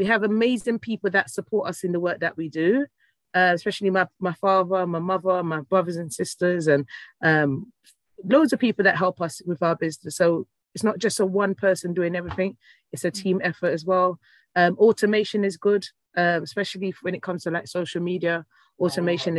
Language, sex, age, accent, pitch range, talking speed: English, female, 30-49, British, 165-195 Hz, 200 wpm